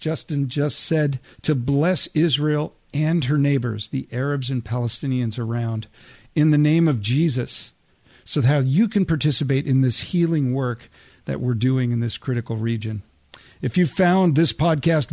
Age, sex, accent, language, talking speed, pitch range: 50-69, male, American, English, 160 wpm, 125-165 Hz